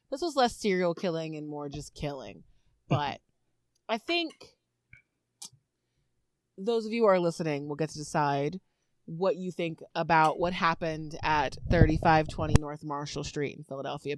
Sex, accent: female, American